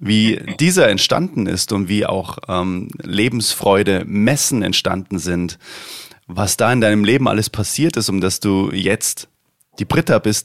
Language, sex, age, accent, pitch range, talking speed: German, male, 30-49, German, 90-110 Hz, 155 wpm